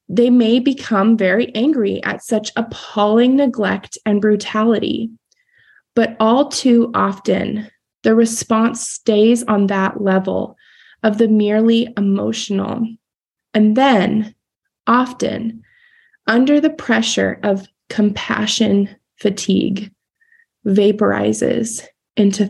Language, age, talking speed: English, 20-39, 95 wpm